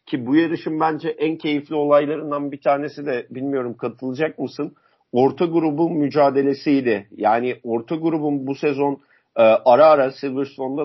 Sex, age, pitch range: male, 50-69, 135-160 Hz